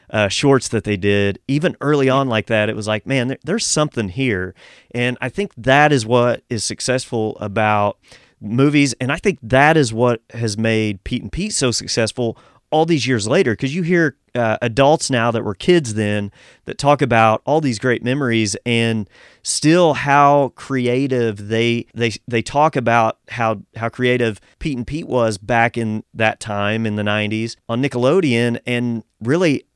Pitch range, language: 110-135 Hz, English